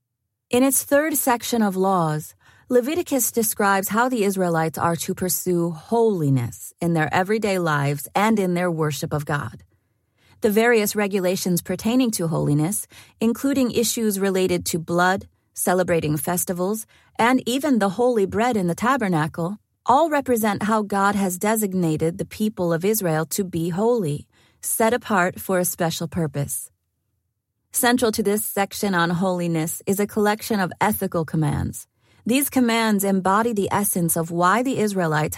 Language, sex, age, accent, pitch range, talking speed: English, female, 30-49, American, 160-215 Hz, 145 wpm